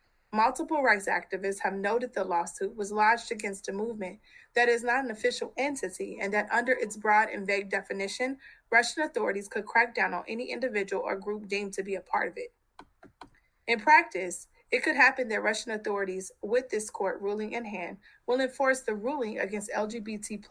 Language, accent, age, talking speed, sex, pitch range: English, American, 30-49, 185 wpm, female, 195-240 Hz